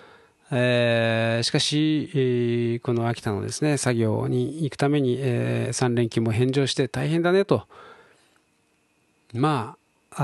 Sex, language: male, Japanese